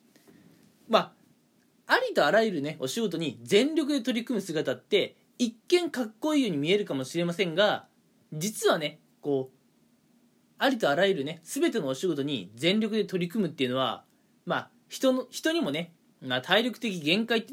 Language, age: Japanese, 20-39